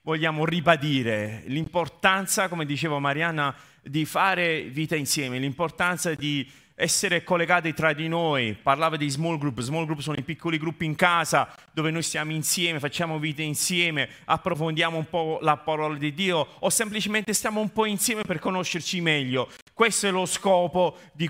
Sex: male